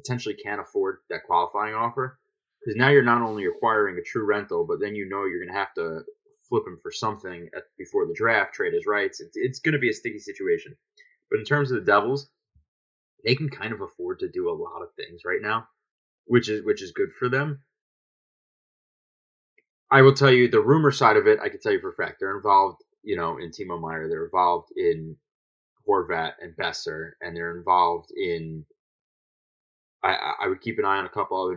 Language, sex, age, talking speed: English, male, 20-39, 215 wpm